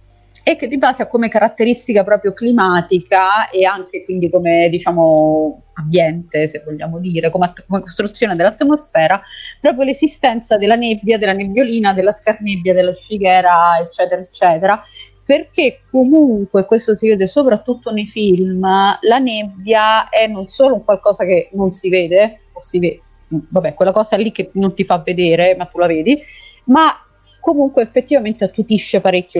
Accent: native